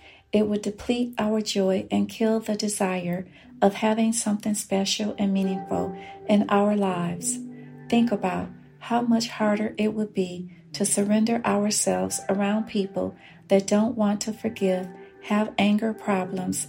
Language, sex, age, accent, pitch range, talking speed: English, female, 50-69, American, 190-215 Hz, 140 wpm